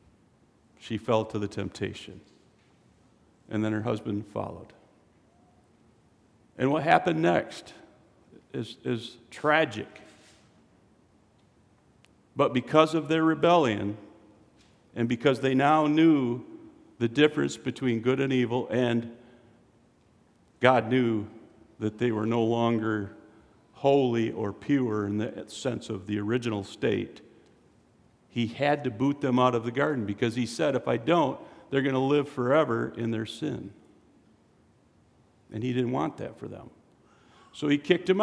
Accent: American